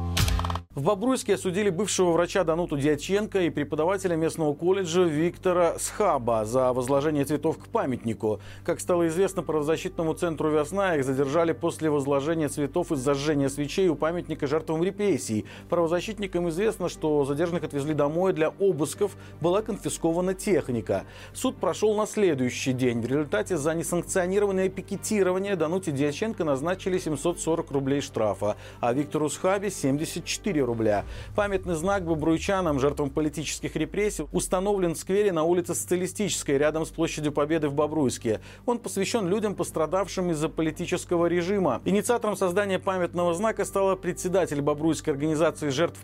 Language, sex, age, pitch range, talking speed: Russian, male, 40-59, 145-185 Hz, 135 wpm